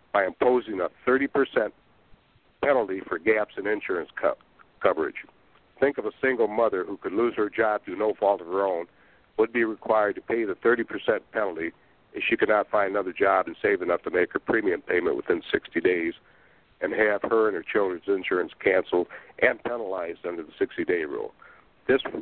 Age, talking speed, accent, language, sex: 60-79, 185 wpm, American, English, male